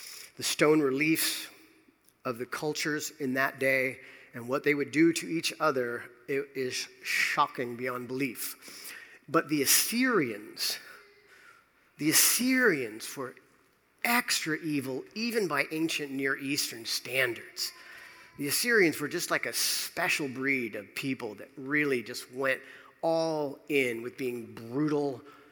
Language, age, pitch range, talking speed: English, 40-59, 130-155 Hz, 130 wpm